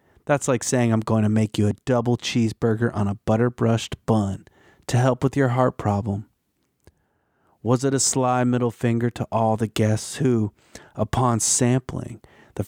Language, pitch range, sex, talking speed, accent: English, 110-130 Hz, male, 165 wpm, American